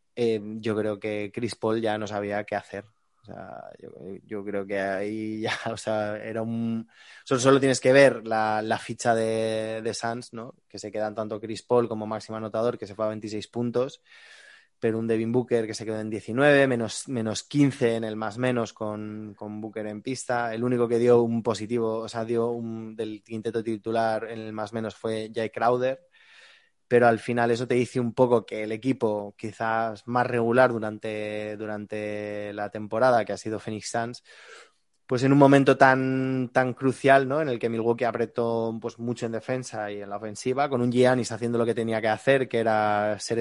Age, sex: 20-39, male